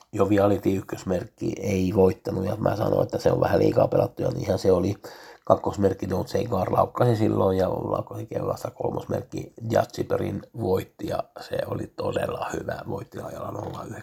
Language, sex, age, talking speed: Finnish, male, 60-79, 155 wpm